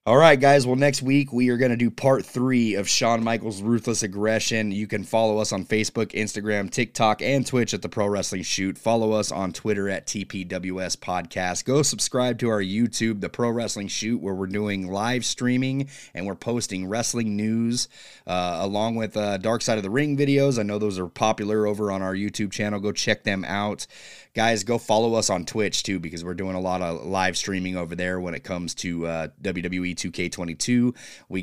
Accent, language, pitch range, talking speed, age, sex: American, English, 90-120 Hz, 205 wpm, 30-49, male